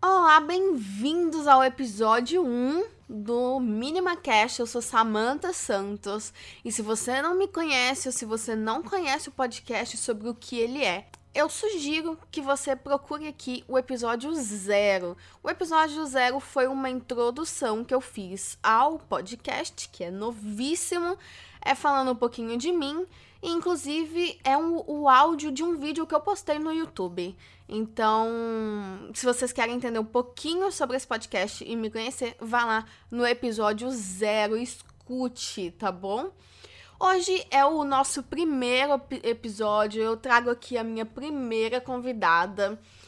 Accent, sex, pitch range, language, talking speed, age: Brazilian, female, 225-300 Hz, English, 150 wpm, 10-29